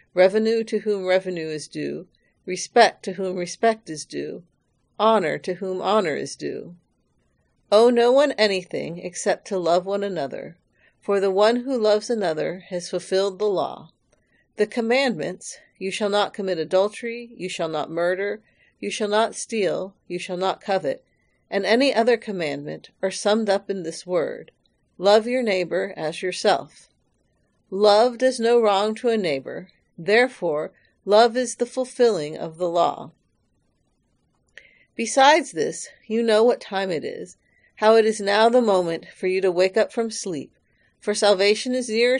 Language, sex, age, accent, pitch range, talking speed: English, female, 50-69, American, 185-230 Hz, 160 wpm